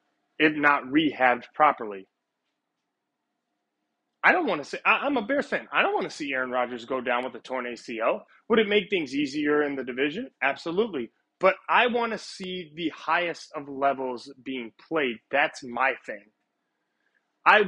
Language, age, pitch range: English, 30-49, 140-205 Hz